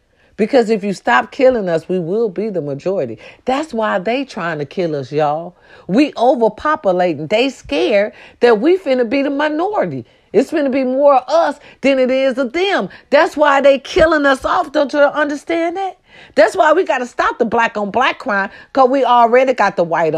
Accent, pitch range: American, 200-285 Hz